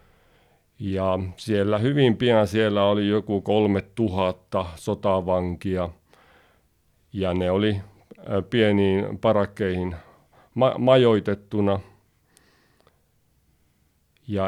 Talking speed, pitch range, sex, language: 70 wpm, 90-105 Hz, male, Finnish